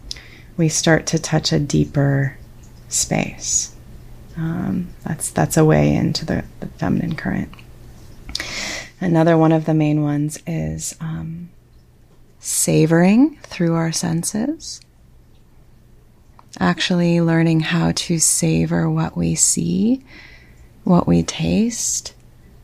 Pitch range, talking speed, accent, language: 140-185 Hz, 105 wpm, American, English